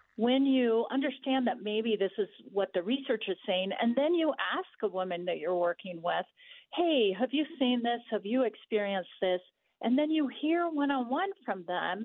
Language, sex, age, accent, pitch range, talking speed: English, female, 50-69, American, 195-275 Hz, 190 wpm